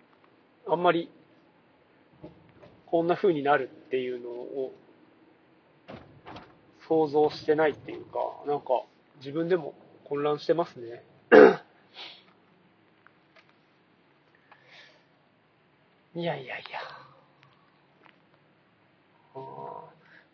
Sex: male